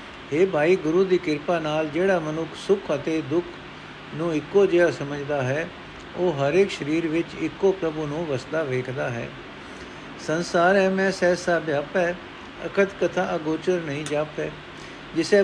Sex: male